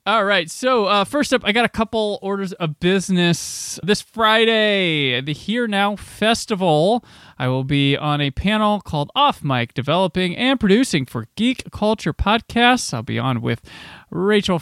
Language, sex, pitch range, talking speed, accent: English, male, 140-200 Hz, 165 wpm, American